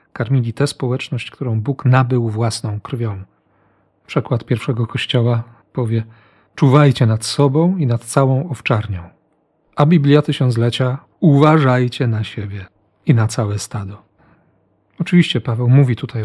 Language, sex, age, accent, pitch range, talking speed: Polish, male, 40-59, native, 115-145 Hz, 120 wpm